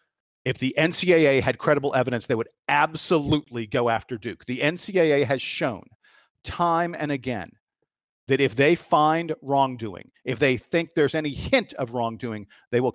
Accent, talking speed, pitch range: American, 160 wpm, 125-175 Hz